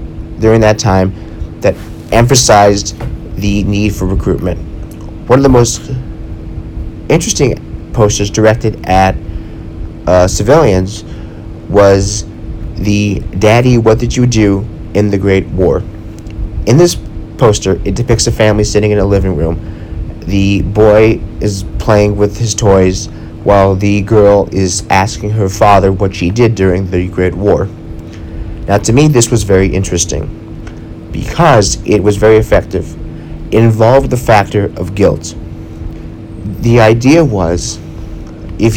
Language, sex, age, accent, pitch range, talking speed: English, male, 30-49, American, 85-110 Hz, 130 wpm